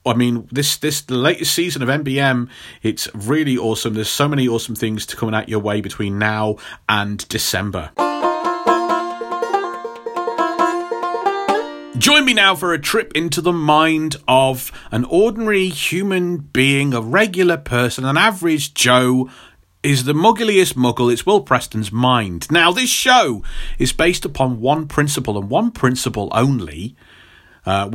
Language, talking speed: English, 140 wpm